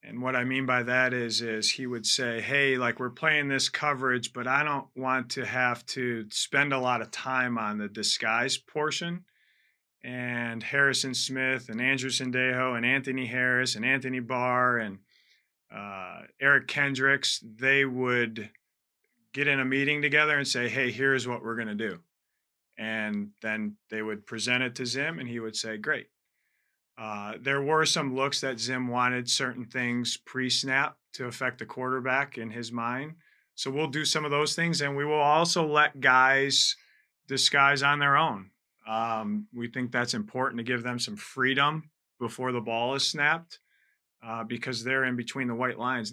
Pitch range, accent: 120-140 Hz, American